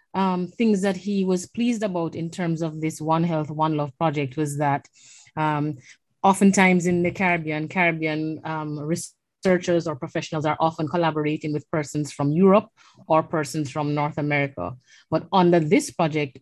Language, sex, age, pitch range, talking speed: French, female, 30-49, 155-180 Hz, 160 wpm